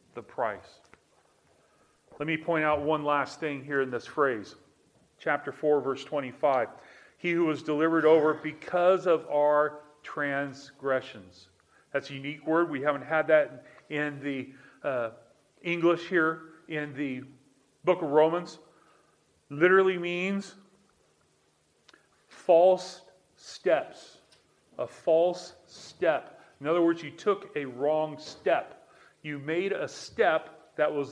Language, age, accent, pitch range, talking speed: English, 40-59, American, 140-165 Hz, 125 wpm